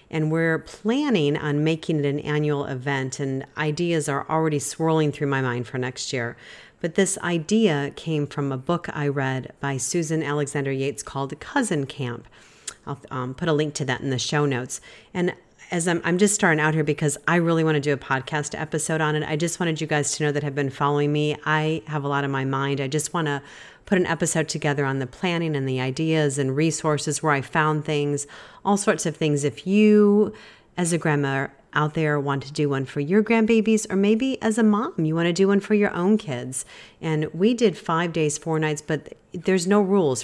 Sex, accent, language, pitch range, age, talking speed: female, American, English, 140-165 Hz, 40-59, 220 wpm